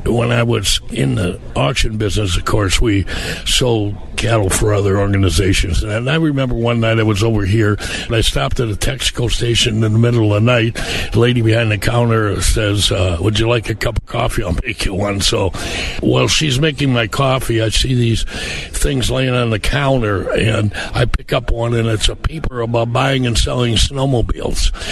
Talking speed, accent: 200 wpm, American